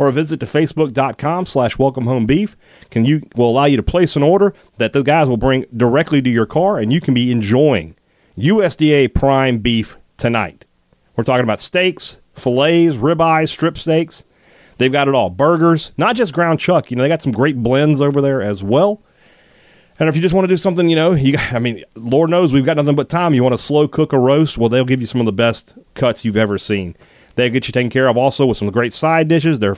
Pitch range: 110-150 Hz